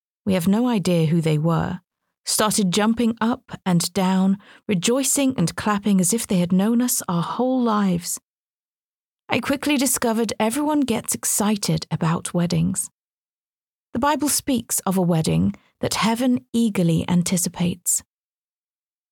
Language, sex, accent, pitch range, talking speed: English, female, British, 180-230 Hz, 130 wpm